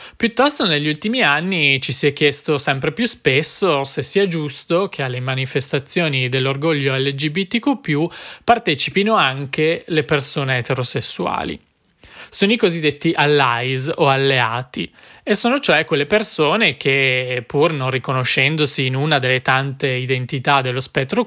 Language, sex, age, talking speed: Italian, male, 20-39, 130 wpm